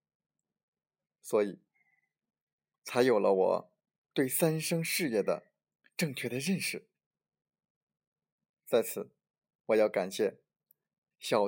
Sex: male